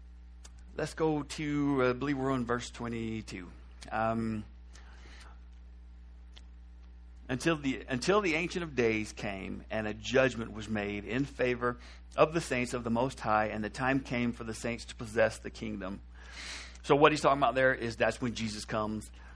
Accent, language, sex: American, English, male